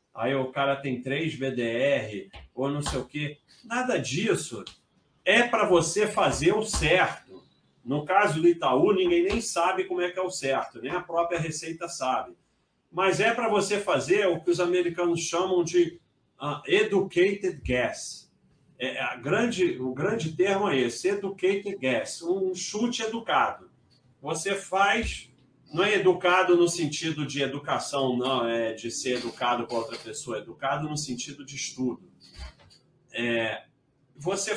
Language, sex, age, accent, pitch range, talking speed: Portuguese, male, 40-59, Brazilian, 140-195 Hz, 155 wpm